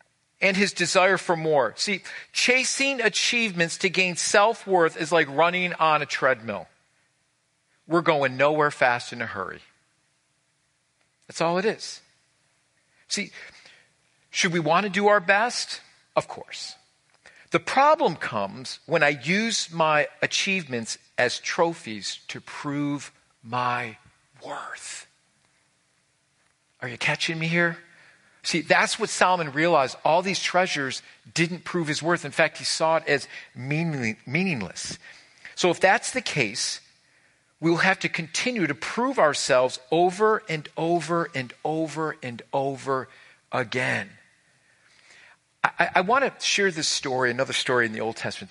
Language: English